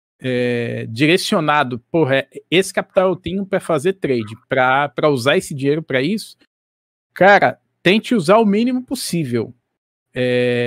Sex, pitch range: male, 130-195 Hz